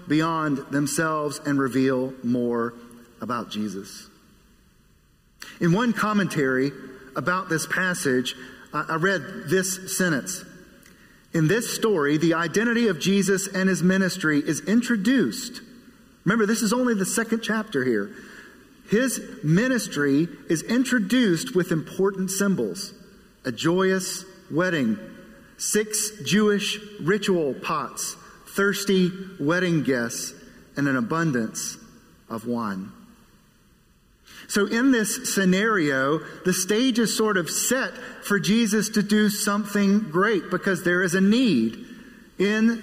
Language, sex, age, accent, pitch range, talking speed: English, male, 40-59, American, 160-215 Hz, 115 wpm